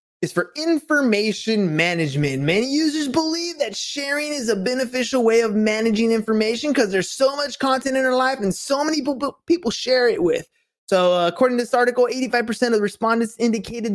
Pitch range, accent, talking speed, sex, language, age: 180-255 Hz, American, 185 wpm, male, English, 20-39